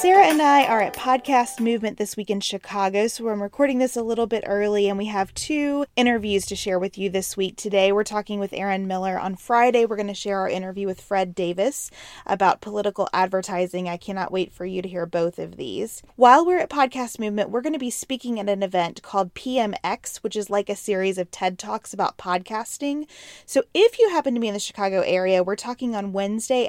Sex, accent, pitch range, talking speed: female, American, 185-235 Hz, 225 wpm